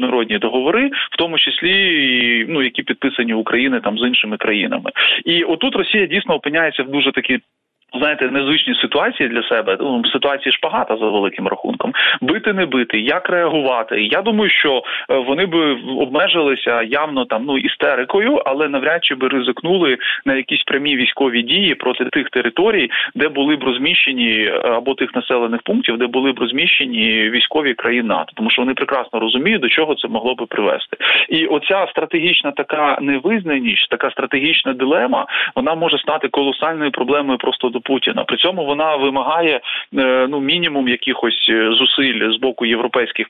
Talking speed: 155 wpm